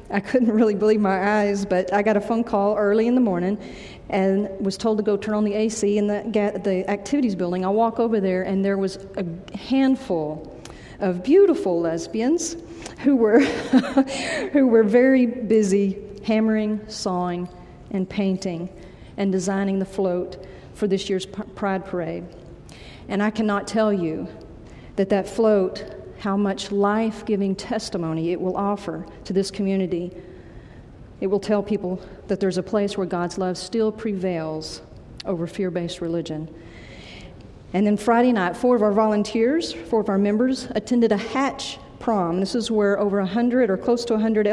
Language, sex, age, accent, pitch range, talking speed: English, female, 40-59, American, 185-220 Hz, 160 wpm